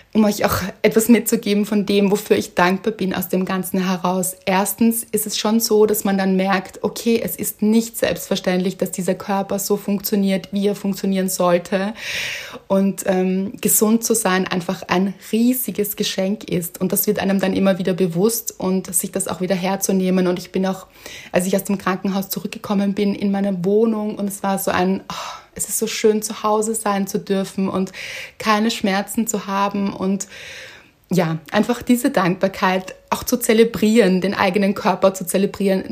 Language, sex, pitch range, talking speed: German, female, 190-215 Hz, 180 wpm